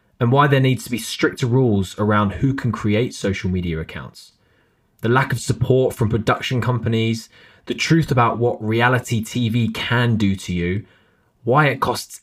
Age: 20-39